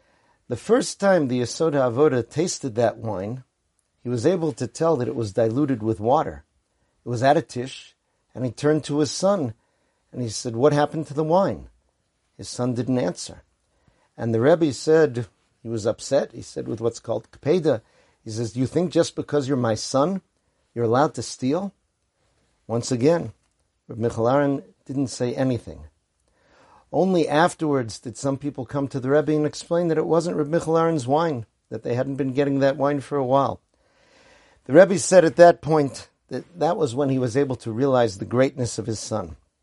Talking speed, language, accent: 190 wpm, English, American